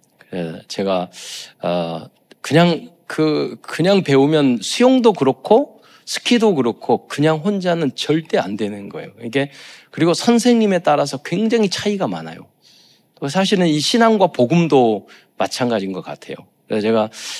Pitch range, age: 110-180 Hz, 40-59